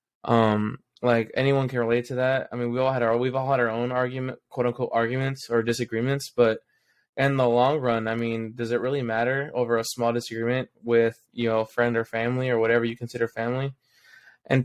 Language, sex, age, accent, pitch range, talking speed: English, male, 20-39, American, 115-125 Hz, 210 wpm